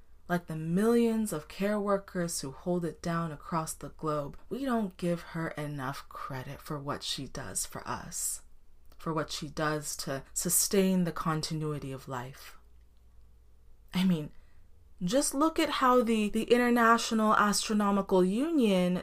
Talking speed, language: 145 wpm, English